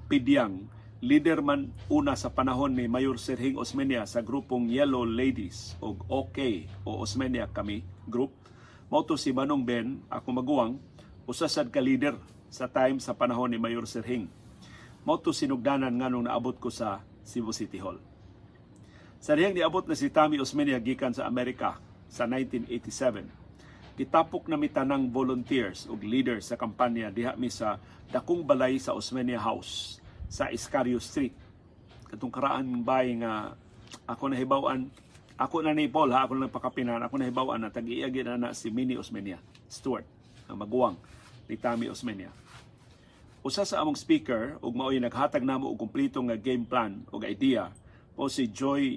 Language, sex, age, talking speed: Filipino, male, 50-69, 150 wpm